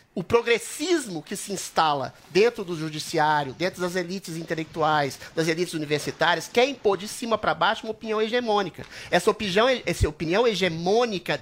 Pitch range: 170-240 Hz